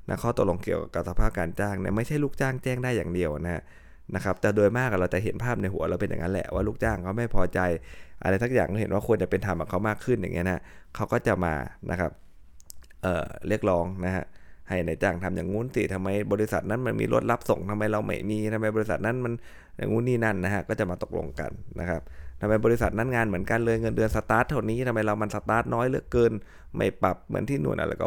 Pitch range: 90-110 Hz